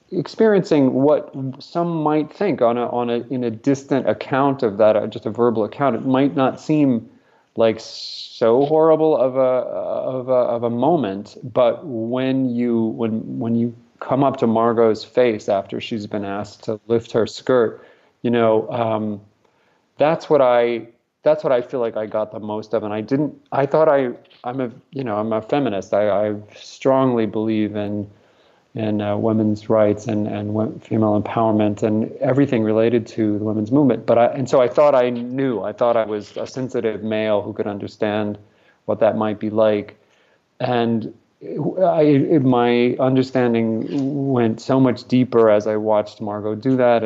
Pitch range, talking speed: 110-130 Hz, 175 wpm